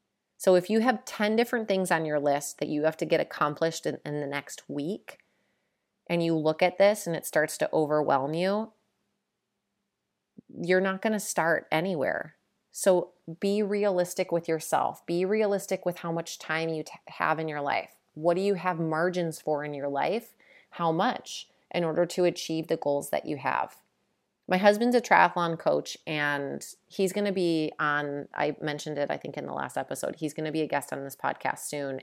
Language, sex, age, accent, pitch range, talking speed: English, female, 30-49, American, 150-190 Hz, 195 wpm